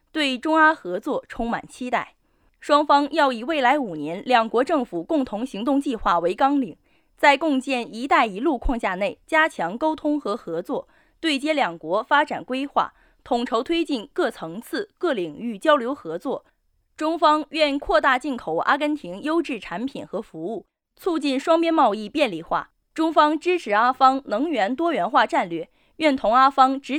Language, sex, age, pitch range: Chinese, female, 20-39, 225-310 Hz